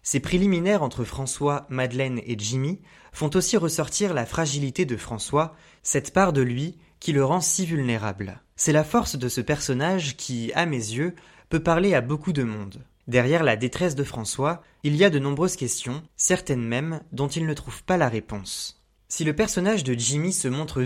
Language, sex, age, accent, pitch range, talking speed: French, male, 20-39, French, 125-165 Hz, 190 wpm